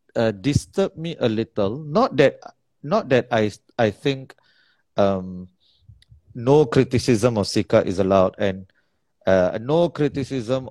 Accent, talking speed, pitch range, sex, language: Malaysian, 125 wpm, 100-130 Hz, male, English